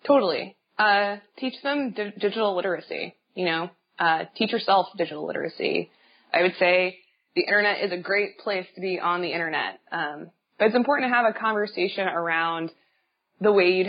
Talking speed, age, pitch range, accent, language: 175 wpm, 20-39, 170-210 Hz, American, English